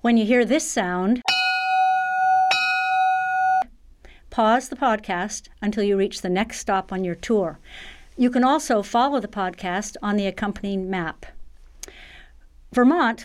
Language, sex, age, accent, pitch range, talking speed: English, female, 50-69, American, 195-250 Hz, 125 wpm